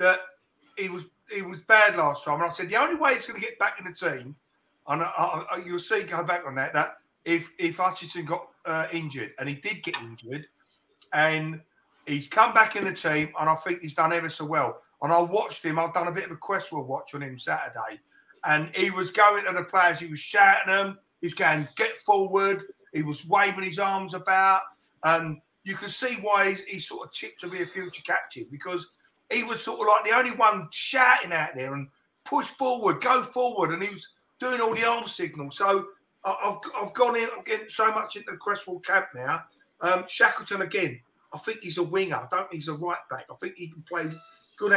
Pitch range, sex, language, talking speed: 165-215 Hz, male, English, 230 wpm